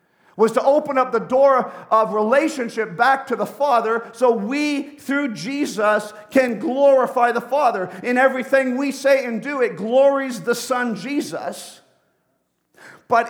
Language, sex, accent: English, male, American